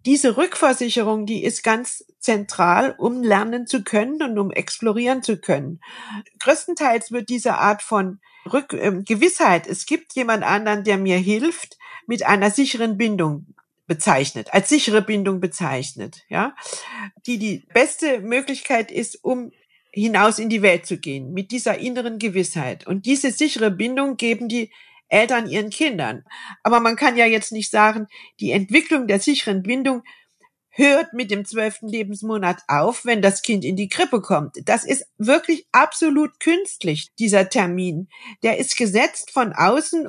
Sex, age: female, 50-69